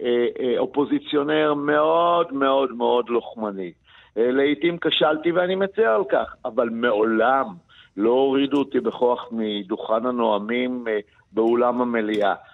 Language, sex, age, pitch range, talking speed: English, male, 60-79, 125-165 Hz, 100 wpm